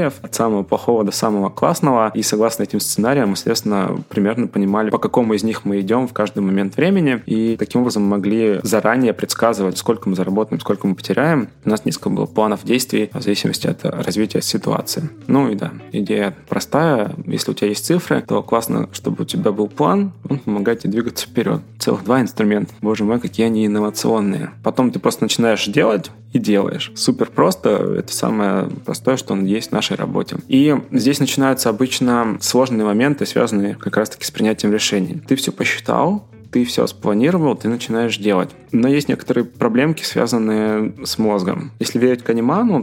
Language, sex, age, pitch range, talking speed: Russian, male, 20-39, 105-125 Hz, 180 wpm